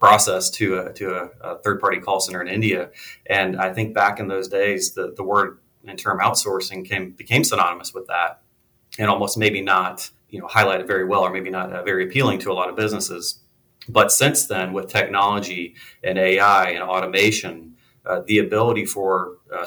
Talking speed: 190 wpm